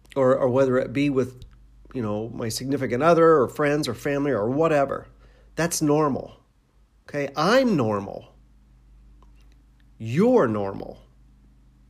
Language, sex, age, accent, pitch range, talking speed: English, male, 40-59, American, 105-145 Hz, 120 wpm